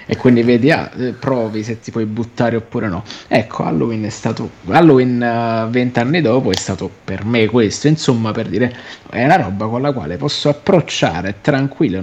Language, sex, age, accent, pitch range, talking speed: Italian, male, 30-49, native, 110-135 Hz, 175 wpm